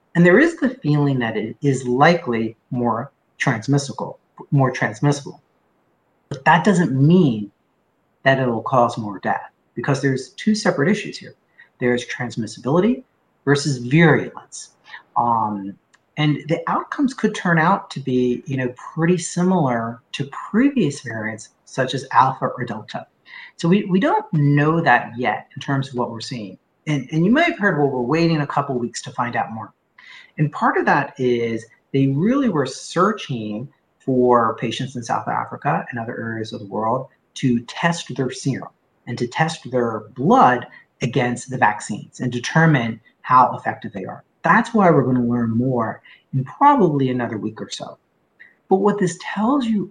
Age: 40-59